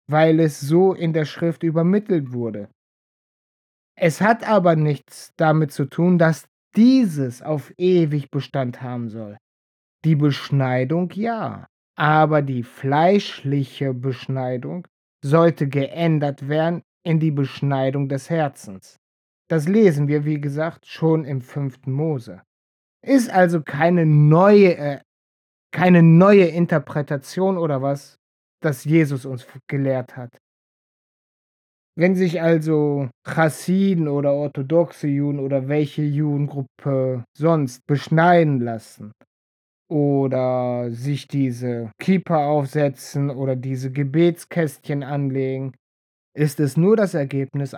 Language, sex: German, male